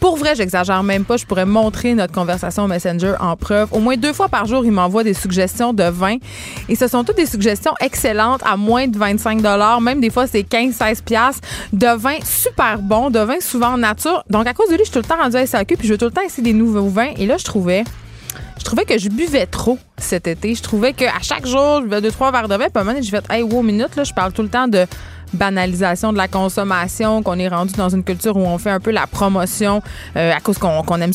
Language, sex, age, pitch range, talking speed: French, female, 20-39, 190-240 Hz, 260 wpm